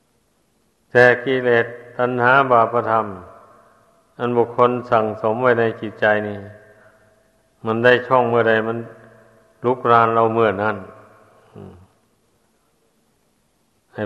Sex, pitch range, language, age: male, 110-120 Hz, Thai, 60-79